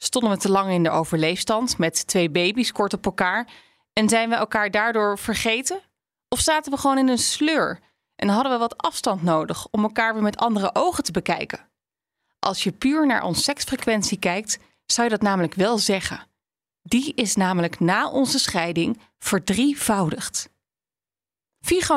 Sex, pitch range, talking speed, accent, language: female, 195-260 Hz, 165 wpm, Dutch, Dutch